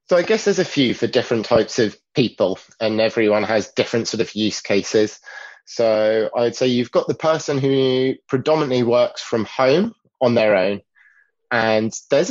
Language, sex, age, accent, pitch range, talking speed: English, male, 20-39, British, 100-120 Hz, 175 wpm